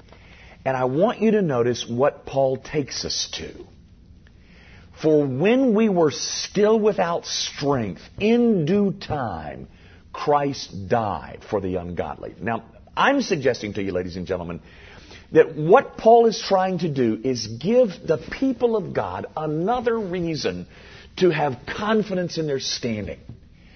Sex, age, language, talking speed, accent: male, 50-69, English, 140 wpm, American